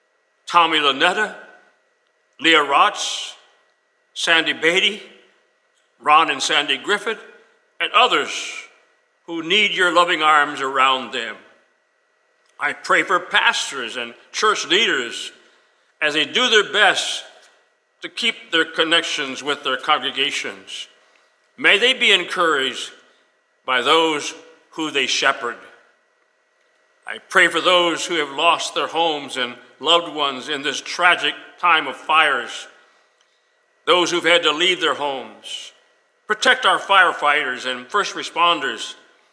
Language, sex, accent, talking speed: English, male, American, 120 wpm